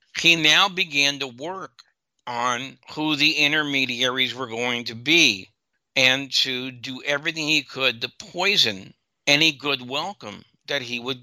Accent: American